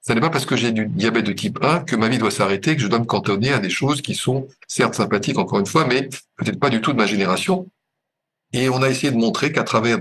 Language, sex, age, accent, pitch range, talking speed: French, male, 50-69, French, 110-140 Hz, 280 wpm